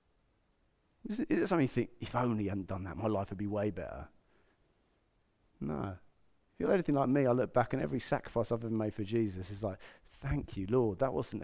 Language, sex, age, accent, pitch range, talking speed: English, male, 30-49, British, 110-135 Hz, 215 wpm